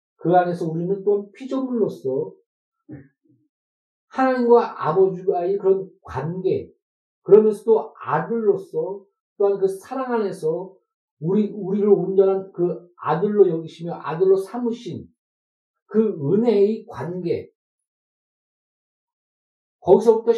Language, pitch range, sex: Korean, 145-230 Hz, male